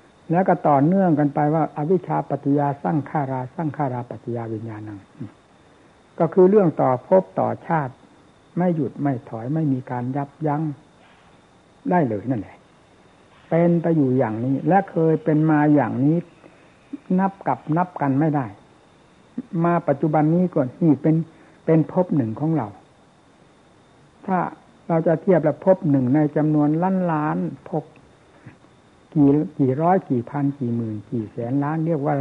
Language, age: Thai, 60-79